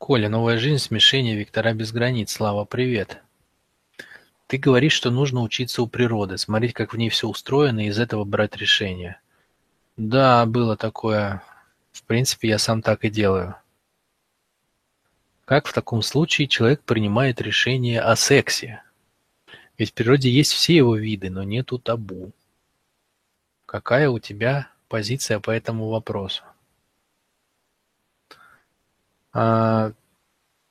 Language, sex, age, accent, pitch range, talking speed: Russian, male, 20-39, native, 105-125 Hz, 125 wpm